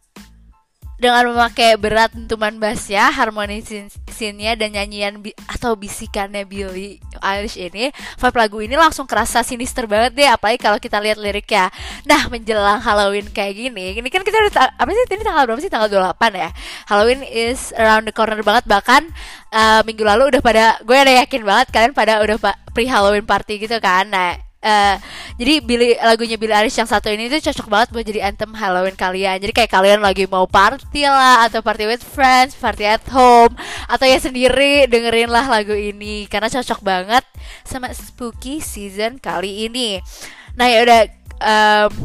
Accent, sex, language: native, female, Indonesian